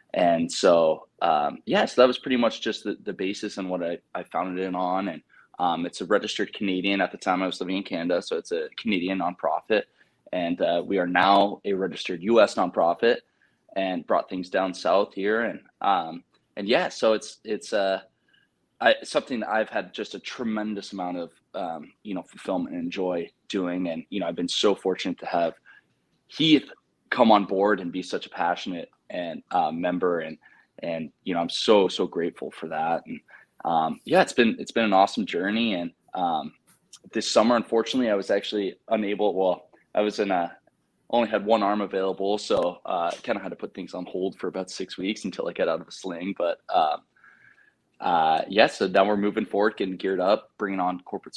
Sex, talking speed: male, 205 wpm